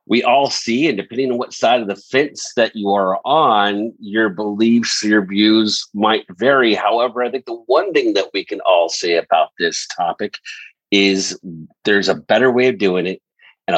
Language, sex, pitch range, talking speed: English, male, 95-120 Hz, 190 wpm